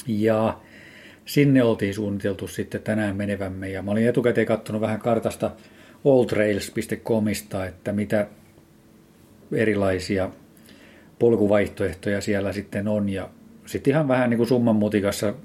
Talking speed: 115 wpm